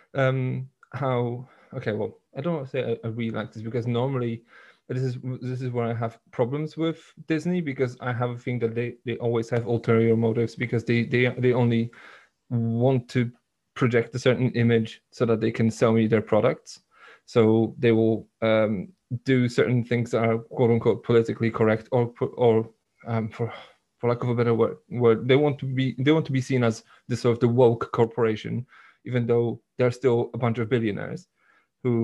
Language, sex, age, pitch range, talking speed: English, male, 20-39, 115-130 Hz, 200 wpm